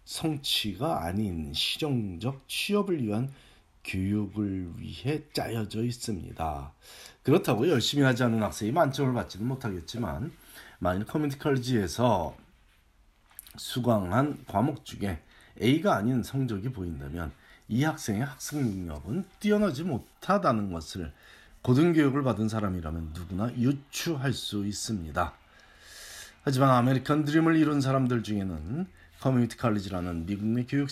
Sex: male